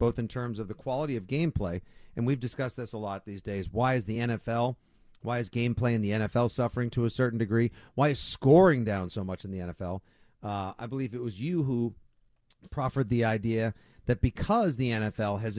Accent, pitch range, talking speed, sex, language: American, 100-130 Hz, 210 wpm, male, English